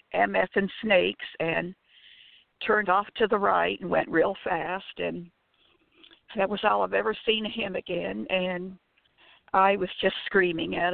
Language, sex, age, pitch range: English, female, 60-79, 175-210 Hz